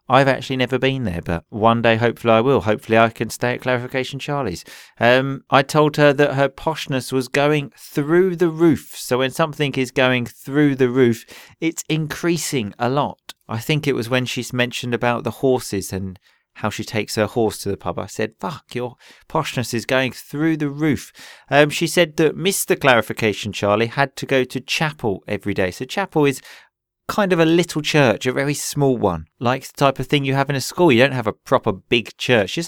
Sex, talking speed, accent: male, 210 wpm, British